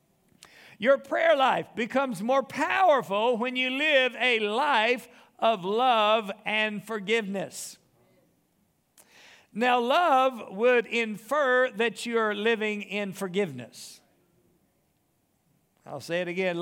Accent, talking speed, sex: American, 100 wpm, male